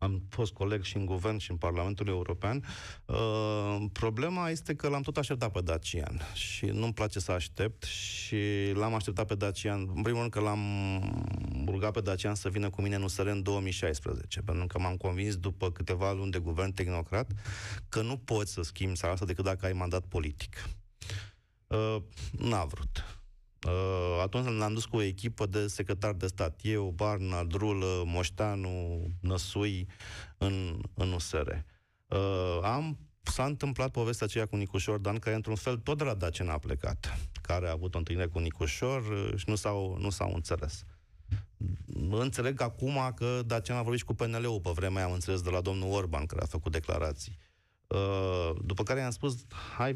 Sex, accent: male, native